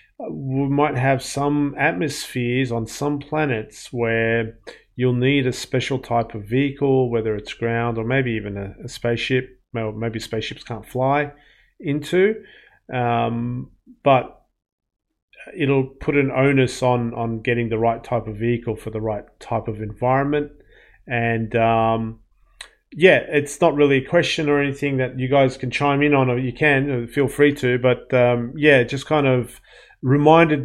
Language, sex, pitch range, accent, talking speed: English, male, 115-140 Hz, Australian, 160 wpm